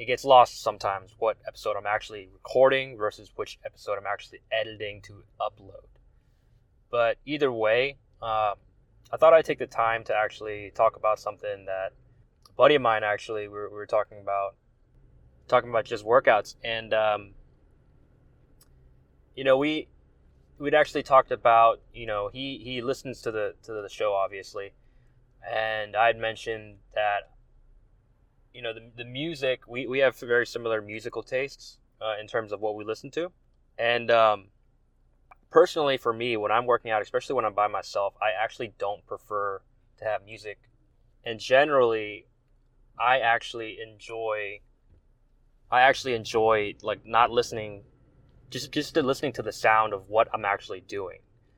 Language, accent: English, American